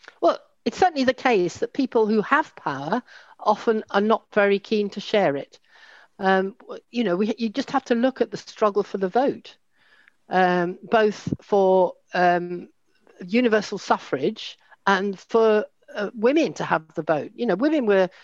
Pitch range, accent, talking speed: 180-230 Hz, British, 170 wpm